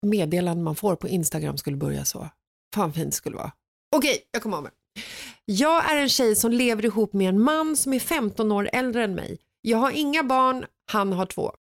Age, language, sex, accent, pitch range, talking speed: 30-49, Swedish, female, native, 195-260 Hz, 215 wpm